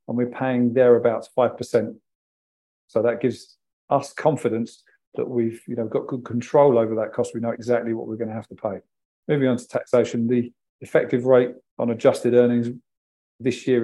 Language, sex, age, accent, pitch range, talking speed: English, male, 40-59, British, 115-125 Hz, 175 wpm